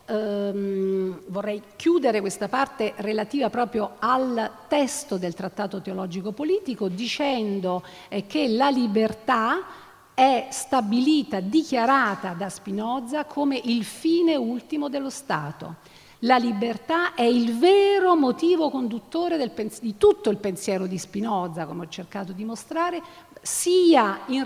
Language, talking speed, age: Italian, 125 wpm, 50-69